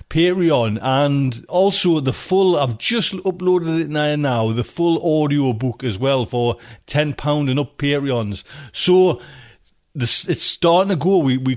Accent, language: British, English